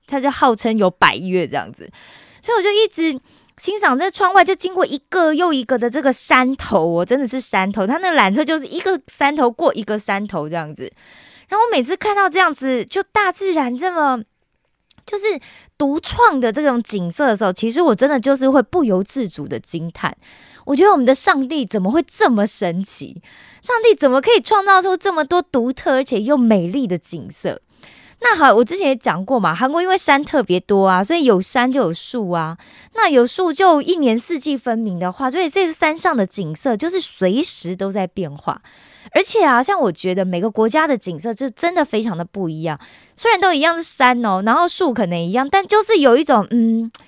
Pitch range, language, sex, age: 205-330 Hz, Korean, female, 20-39